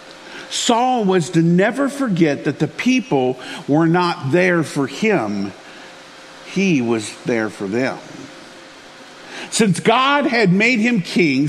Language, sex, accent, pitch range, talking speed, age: English, male, American, 150-205 Hz, 125 wpm, 50-69